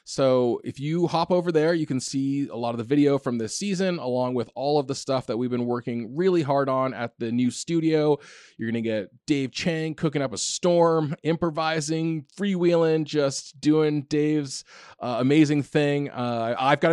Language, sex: English, male